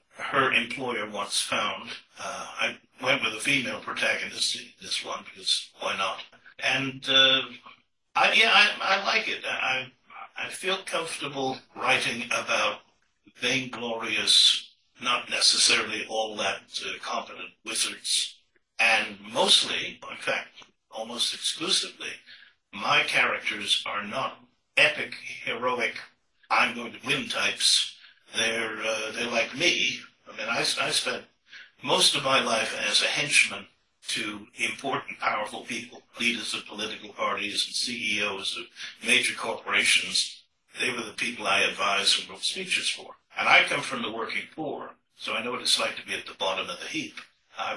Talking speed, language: 145 wpm, English